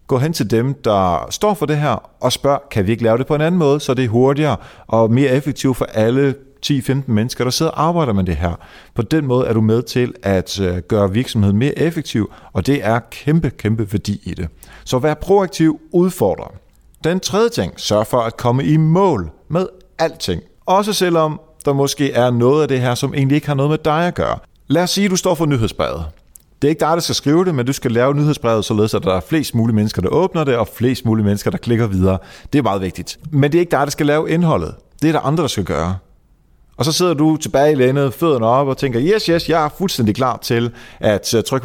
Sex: male